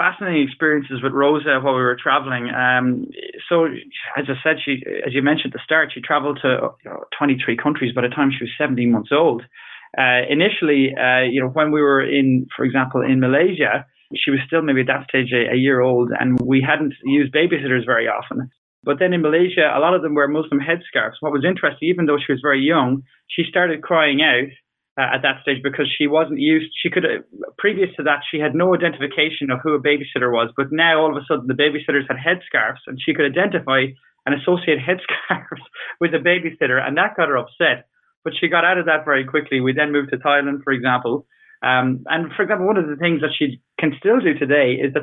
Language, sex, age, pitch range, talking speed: English, male, 20-39, 135-165 Hz, 225 wpm